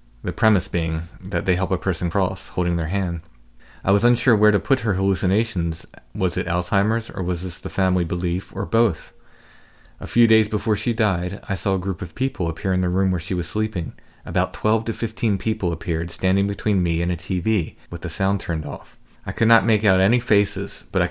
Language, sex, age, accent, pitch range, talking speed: English, male, 30-49, American, 90-110 Hz, 220 wpm